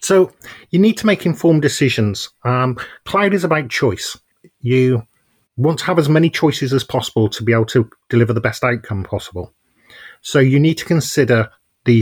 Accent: British